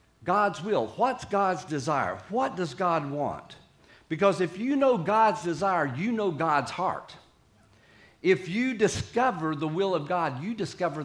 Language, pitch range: English, 125-180 Hz